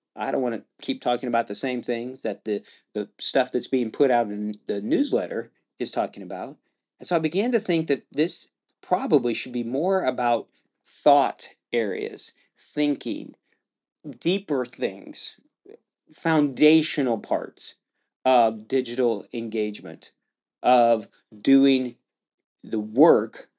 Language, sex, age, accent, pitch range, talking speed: English, male, 40-59, American, 115-155 Hz, 130 wpm